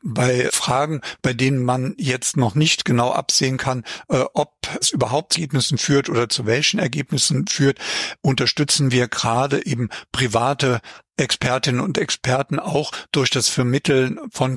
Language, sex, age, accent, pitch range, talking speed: German, male, 50-69, German, 125-145 Hz, 145 wpm